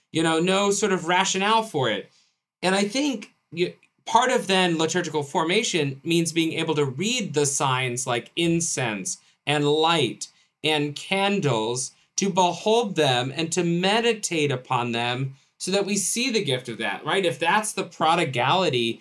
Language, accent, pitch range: English, American, 135-180 Hz